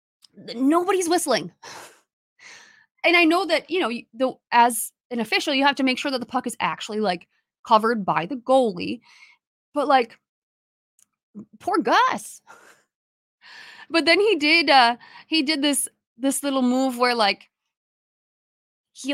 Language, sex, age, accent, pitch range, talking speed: English, female, 20-39, American, 205-275 Hz, 140 wpm